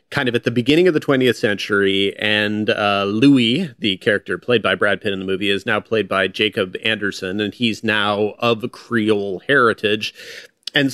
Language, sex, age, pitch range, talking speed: English, male, 30-49, 105-130 Hz, 190 wpm